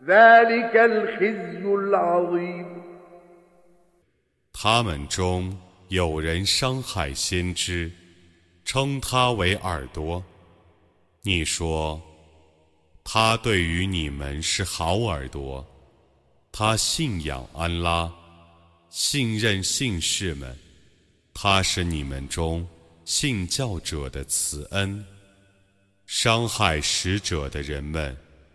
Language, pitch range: Arabic, 80-110 Hz